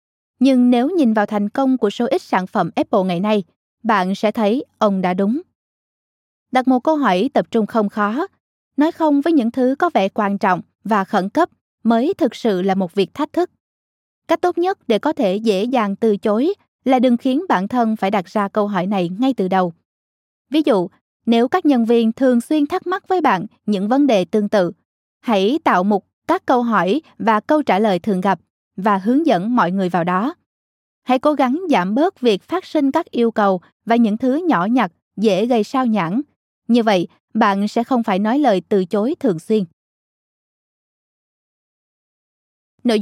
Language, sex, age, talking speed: Vietnamese, female, 20-39, 195 wpm